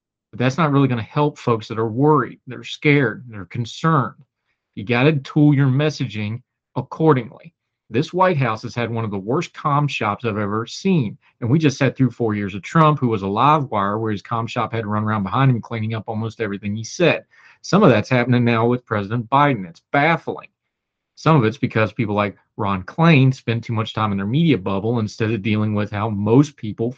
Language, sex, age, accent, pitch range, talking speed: English, male, 40-59, American, 110-150 Hz, 220 wpm